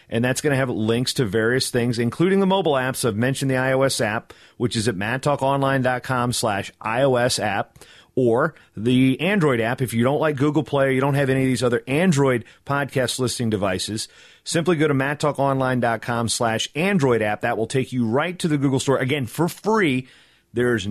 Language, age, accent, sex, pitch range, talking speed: English, 40-59, American, male, 115-140 Hz, 190 wpm